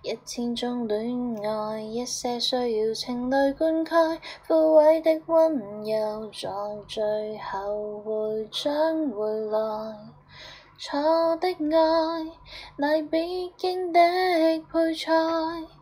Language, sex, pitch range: Chinese, female, 300-385 Hz